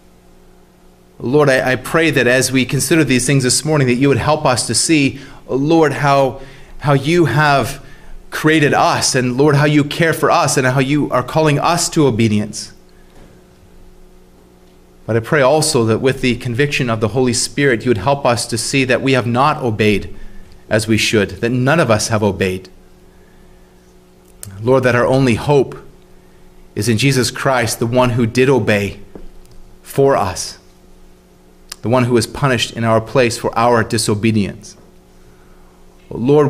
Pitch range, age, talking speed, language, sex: 105-145 Hz, 30-49, 165 wpm, English, male